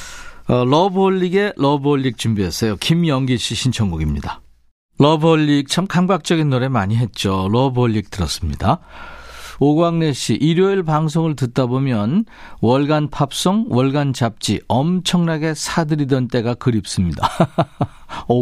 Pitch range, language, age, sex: 115-165 Hz, Korean, 50-69, male